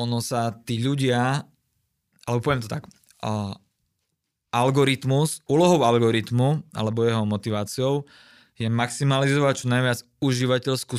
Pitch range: 110-130 Hz